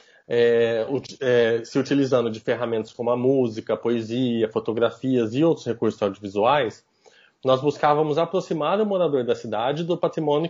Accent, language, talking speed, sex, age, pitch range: Brazilian, Portuguese, 135 wpm, male, 20-39, 120-185 Hz